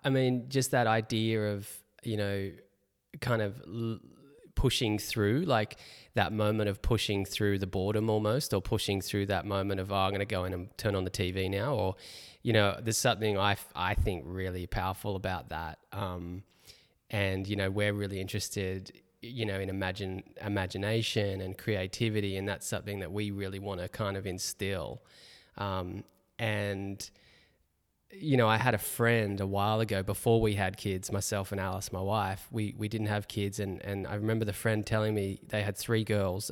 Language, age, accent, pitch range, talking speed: English, 20-39, Australian, 100-120 Hz, 185 wpm